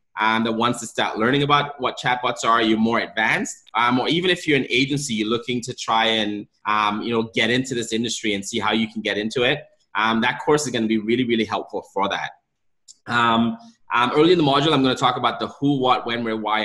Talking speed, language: 250 wpm, English